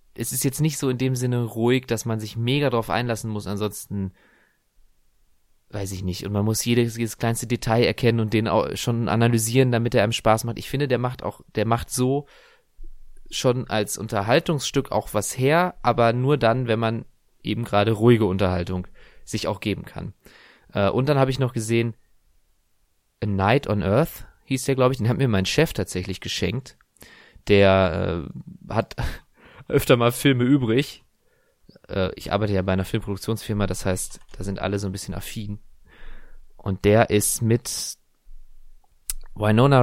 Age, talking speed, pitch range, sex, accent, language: 20-39, 170 wpm, 100-125 Hz, male, German, English